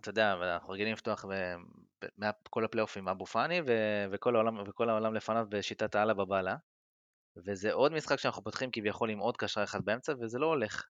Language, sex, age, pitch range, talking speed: Hebrew, male, 20-39, 95-120 Hz, 195 wpm